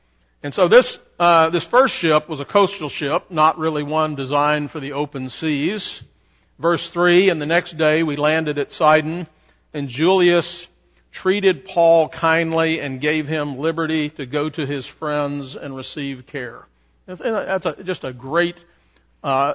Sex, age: male, 50-69